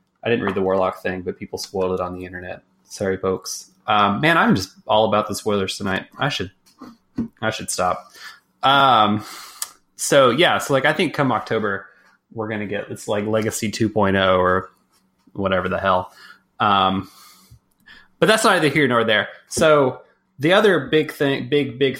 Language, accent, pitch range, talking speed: English, American, 100-125 Hz, 170 wpm